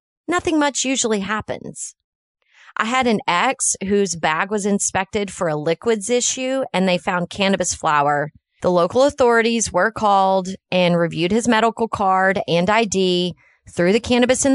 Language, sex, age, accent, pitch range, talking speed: English, female, 30-49, American, 180-235 Hz, 155 wpm